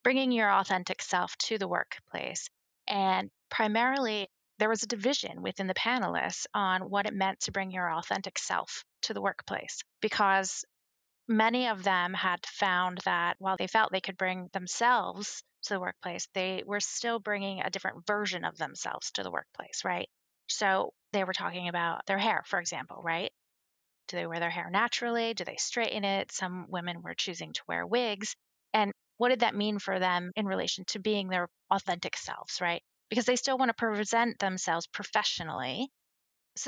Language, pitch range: English, 185-235 Hz